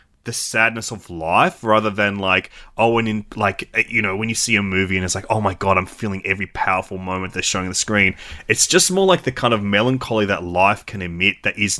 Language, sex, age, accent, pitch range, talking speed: English, male, 20-39, Australian, 95-120 Hz, 240 wpm